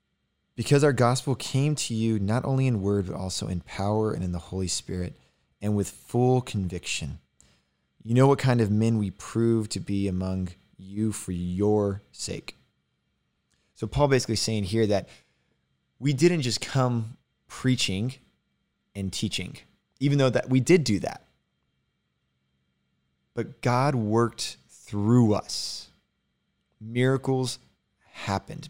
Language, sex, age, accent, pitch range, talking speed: English, male, 20-39, American, 95-115 Hz, 135 wpm